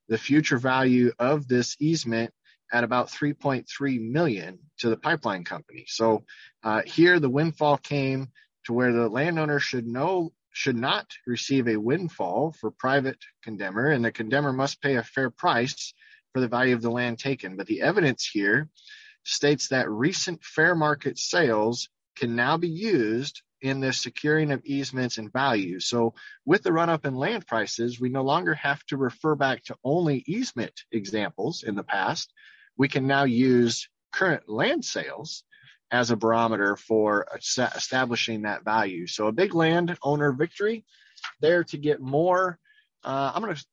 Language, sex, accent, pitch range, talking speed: English, male, American, 120-155 Hz, 165 wpm